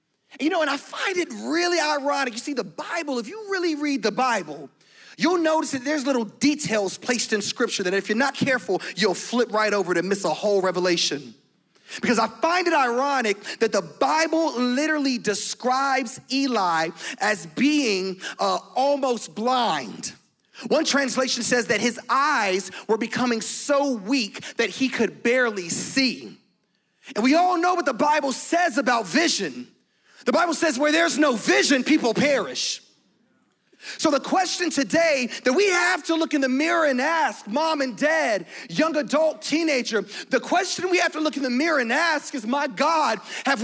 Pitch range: 235-320 Hz